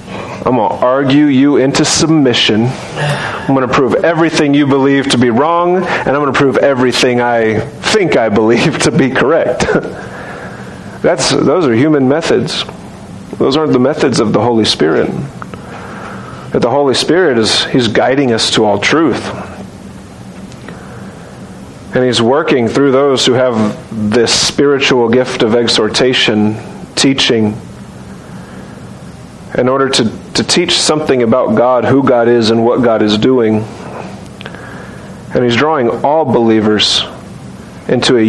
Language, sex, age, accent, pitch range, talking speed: English, male, 40-59, American, 115-140 Hz, 140 wpm